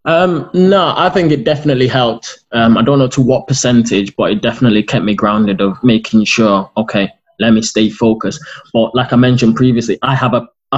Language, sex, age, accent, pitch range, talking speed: English, male, 20-39, British, 115-135 Hz, 200 wpm